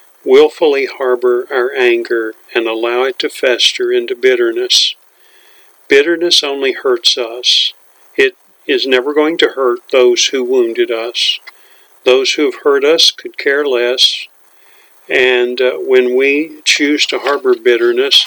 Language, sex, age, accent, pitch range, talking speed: English, male, 50-69, American, 350-395 Hz, 135 wpm